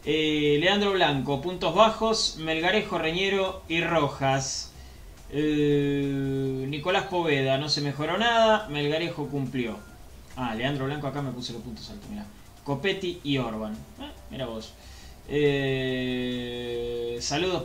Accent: Argentinian